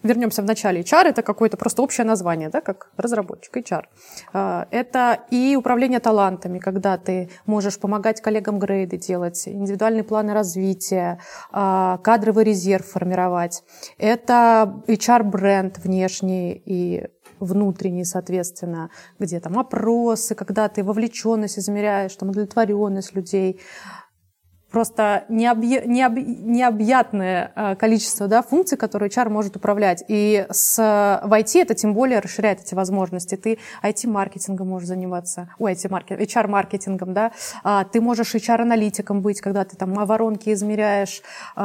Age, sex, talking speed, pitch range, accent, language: 20-39, female, 120 wpm, 190-225 Hz, native, Russian